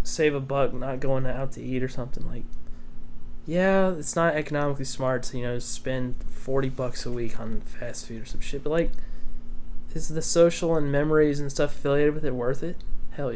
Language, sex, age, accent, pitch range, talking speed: English, male, 20-39, American, 115-145 Hz, 200 wpm